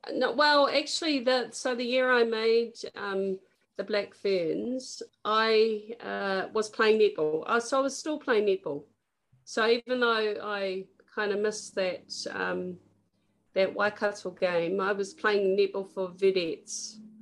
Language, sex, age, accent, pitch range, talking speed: English, female, 40-59, Australian, 195-240 Hz, 145 wpm